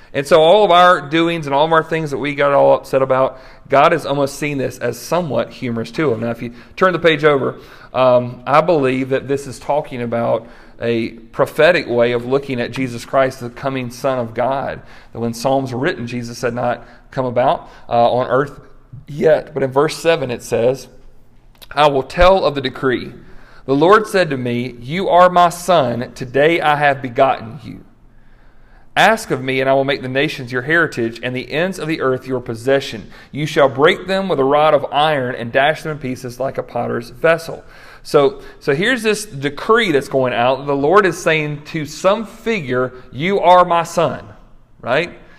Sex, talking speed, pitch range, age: male, 200 wpm, 130-165 Hz, 40-59